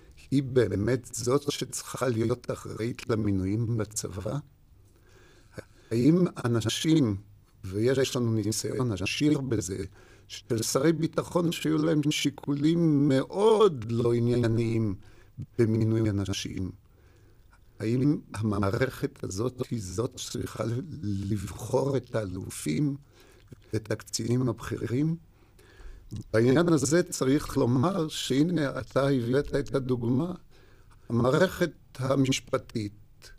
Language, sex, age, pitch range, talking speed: Hebrew, male, 50-69, 110-140 Hz, 90 wpm